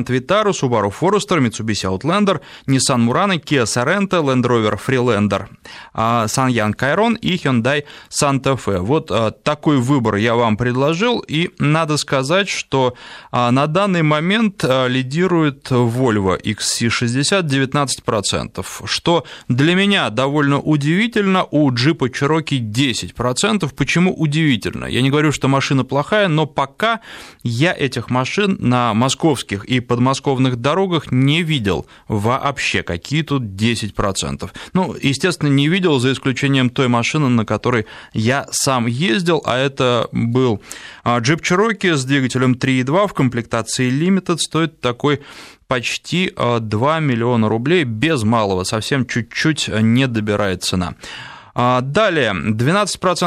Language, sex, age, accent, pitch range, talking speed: Russian, male, 20-39, native, 120-155 Hz, 120 wpm